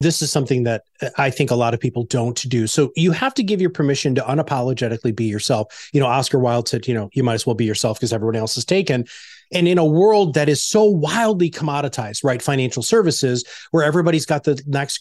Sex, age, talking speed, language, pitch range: male, 30-49, 230 wpm, English, 130-175 Hz